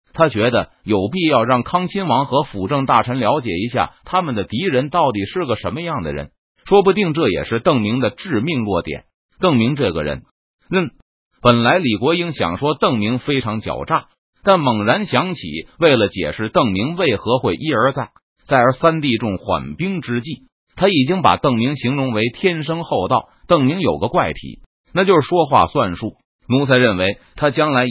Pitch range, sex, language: 105-160 Hz, male, Chinese